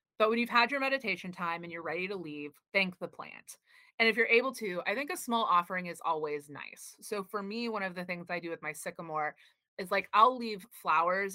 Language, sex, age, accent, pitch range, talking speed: English, female, 20-39, American, 165-220 Hz, 240 wpm